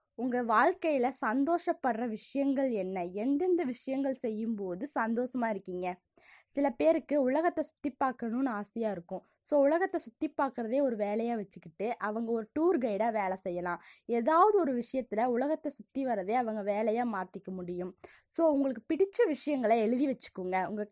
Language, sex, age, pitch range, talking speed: Tamil, female, 20-39, 205-280 Hz, 135 wpm